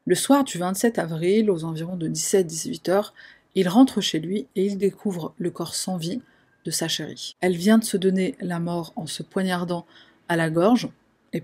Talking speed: 200 wpm